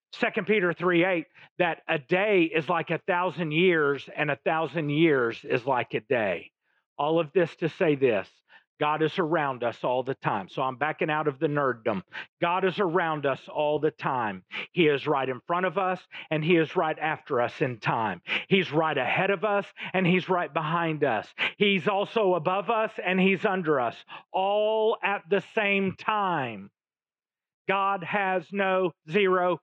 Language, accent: English, American